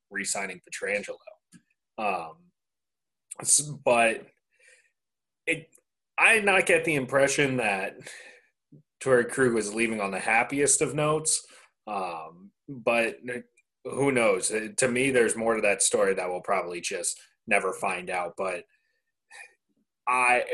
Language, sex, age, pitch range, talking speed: English, male, 30-49, 115-190 Hz, 115 wpm